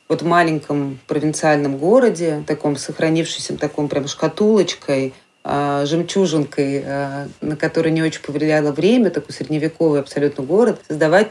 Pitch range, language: 150-175 Hz, Russian